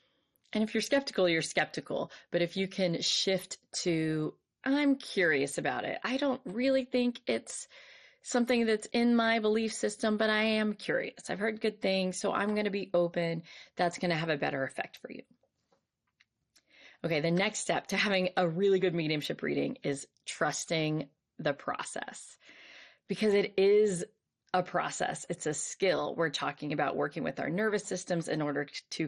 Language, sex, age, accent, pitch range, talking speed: English, female, 30-49, American, 155-195 Hz, 175 wpm